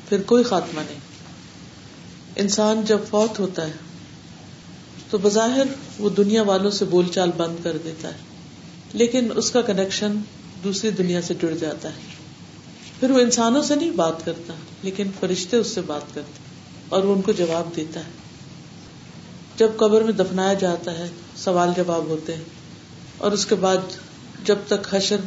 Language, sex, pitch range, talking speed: Urdu, female, 175-220 Hz, 160 wpm